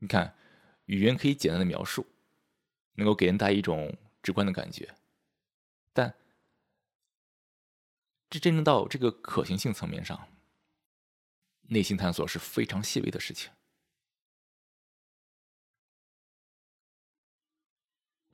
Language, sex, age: Chinese, male, 20-39